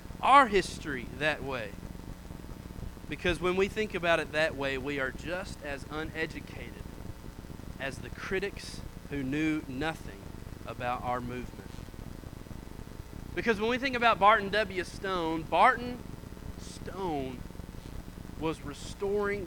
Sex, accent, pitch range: male, American, 155-235 Hz